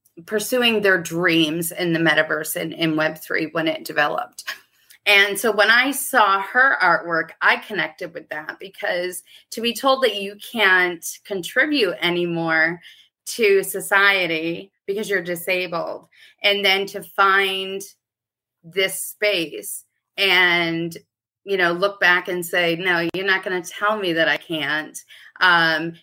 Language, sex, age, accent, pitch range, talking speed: English, female, 30-49, American, 170-205 Hz, 145 wpm